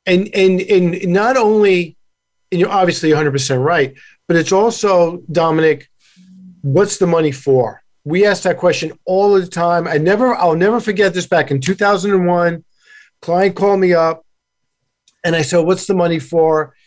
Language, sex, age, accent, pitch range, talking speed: English, male, 50-69, American, 155-195 Hz, 175 wpm